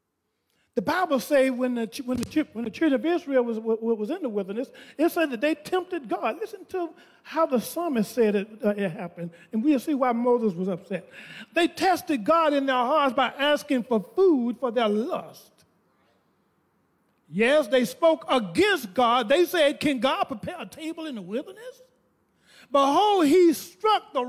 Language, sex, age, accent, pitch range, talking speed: English, male, 40-59, American, 230-315 Hz, 175 wpm